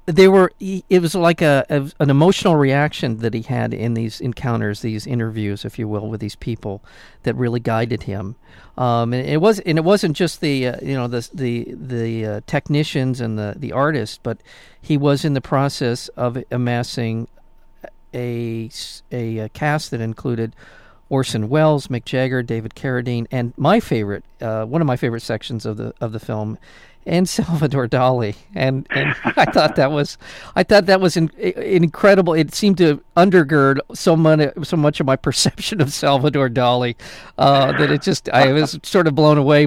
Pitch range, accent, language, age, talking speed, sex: 120-160 Hz, American, English, 50-69, 185 wpm, male